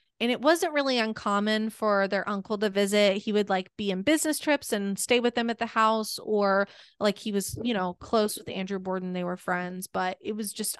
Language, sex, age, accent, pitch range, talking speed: English, female, 20-39, American, 190-230 Hz, 230 wpm